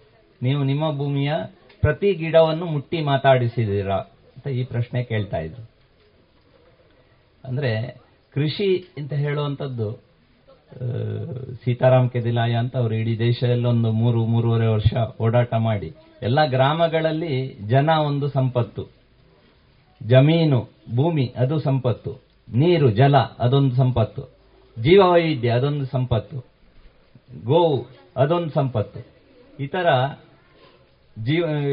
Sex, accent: male, native